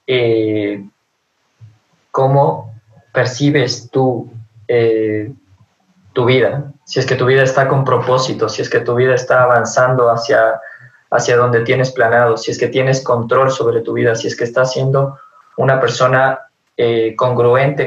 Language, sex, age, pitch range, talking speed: Spanish, male, 20-39, 125-155 Hz, 150 wpm